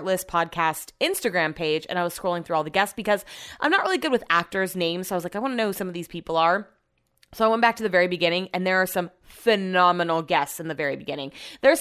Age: 20-39